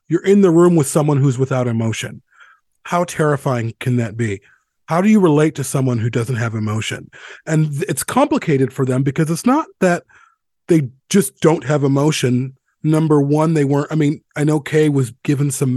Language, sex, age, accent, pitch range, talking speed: English, male, 30-49, American, 130-170 Hz, 190 wpm